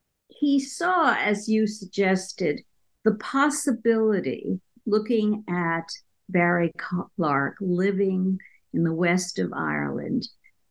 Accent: American